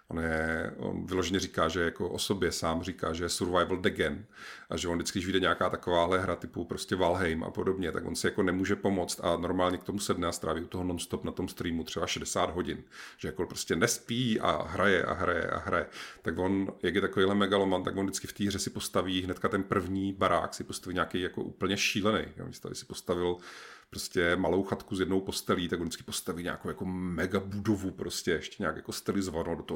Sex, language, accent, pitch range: male, Czech, native, 85-100 Hz